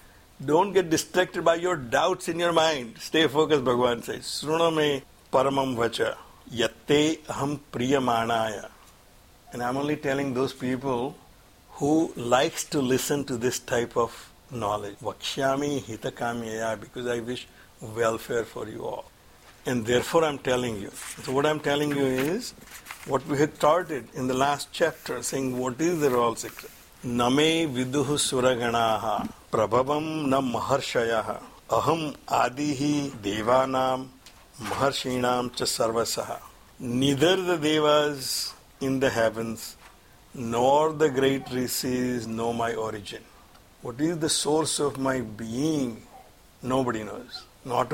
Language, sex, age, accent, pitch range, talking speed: English, male, 60-79, Indian, 120-145 Hz, 120 wpm